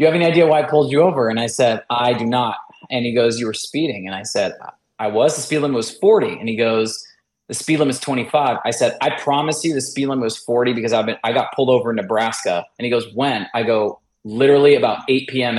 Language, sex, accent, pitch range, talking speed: English, male, American, 115-150 Hz, 260 wpm